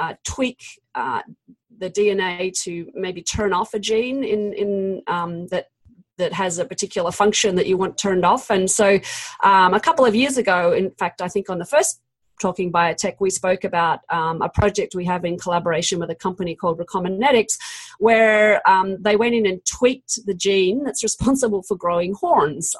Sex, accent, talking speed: female, Australian, 185 wpm